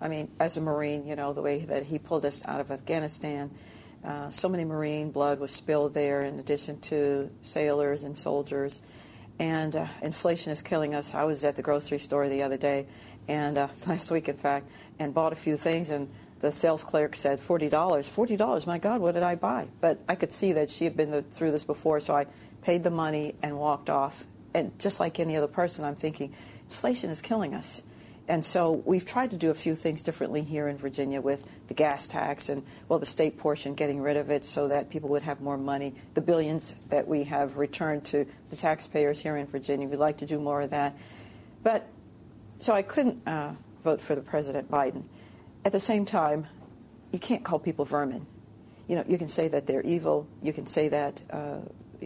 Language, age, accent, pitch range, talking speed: English, 50-69, American, 140-160 Hz, 215 wpm